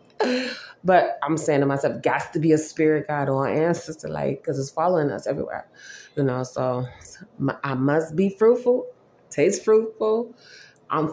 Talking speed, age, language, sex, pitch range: 155 wpm, 20-39, English, female, 150-185 Hz